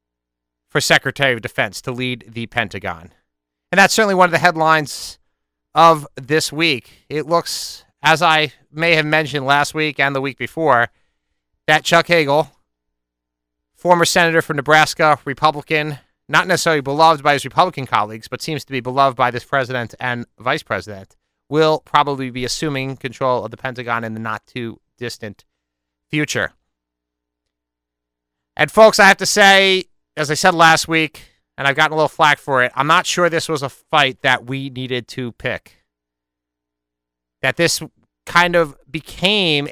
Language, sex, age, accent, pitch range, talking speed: English, male, 30-49, American, 110-155 Hz, 160 wpm